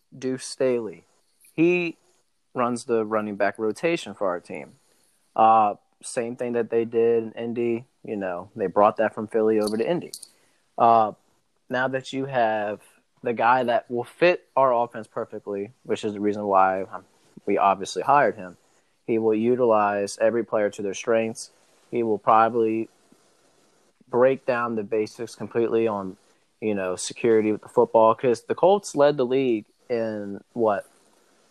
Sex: male